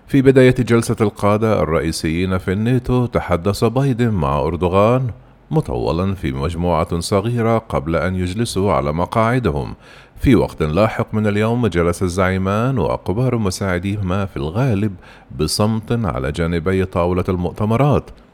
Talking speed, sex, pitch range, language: 120 wpm, male, 90-115 Hz, Arabic